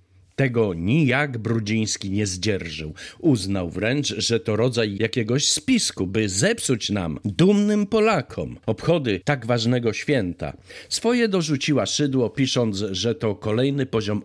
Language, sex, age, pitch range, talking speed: Polish, male, 50-69, 105-150 Hz, 120 wpm